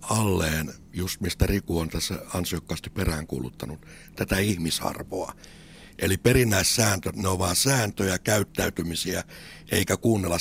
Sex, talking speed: male, 110 wpm